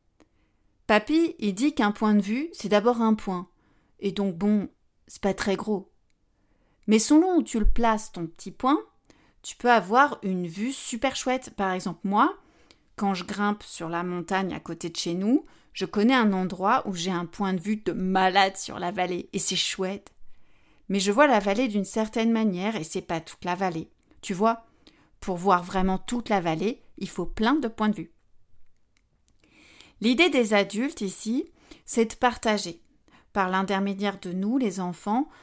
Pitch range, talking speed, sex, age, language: 185-230 Hz, 185 wpm, female, 30-49, French